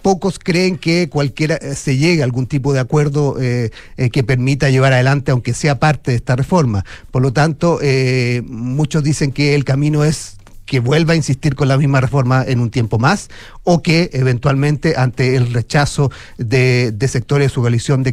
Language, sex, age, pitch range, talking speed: Spanish, male, 40-59, 115-140 Hz, 190 wpm